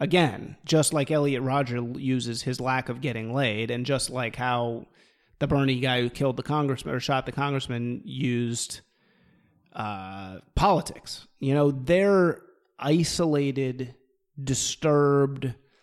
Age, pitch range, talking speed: 30-49, 130-160 Hz, 130 wpm